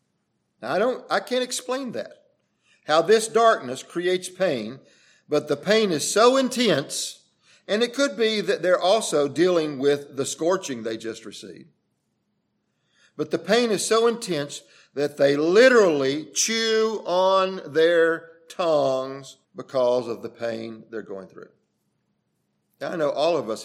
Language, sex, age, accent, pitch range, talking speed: English, male, 50-69, American, 120-170 Hz, 145 wpm